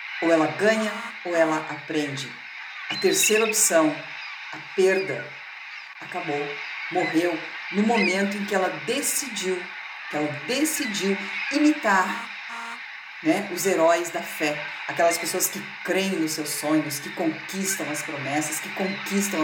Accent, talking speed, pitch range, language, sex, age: Brazilian, 125 wpm, 160-210 Hz, Portuguese, female, 50-69